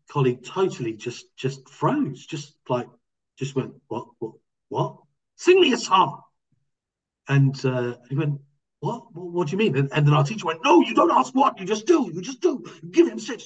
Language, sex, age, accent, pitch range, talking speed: English, male, 40-59, British, 135-190 Hz, 205 wpm